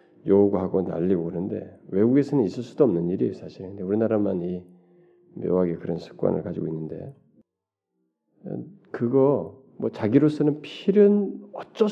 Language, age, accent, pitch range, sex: Korean, 40-59, native, 100-160 Hz, male